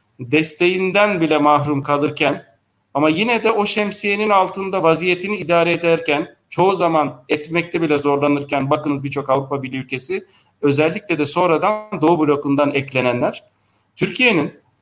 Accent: native